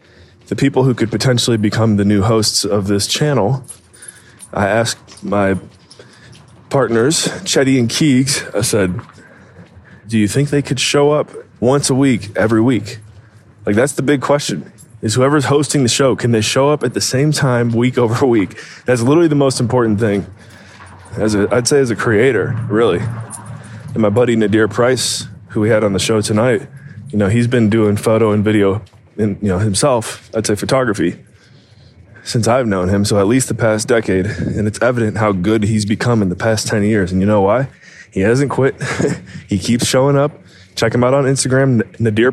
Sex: male